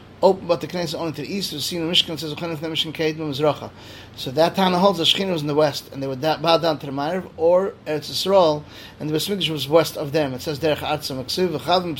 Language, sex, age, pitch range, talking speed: English, male, 30-49, 145-175 Hz, 220 wpm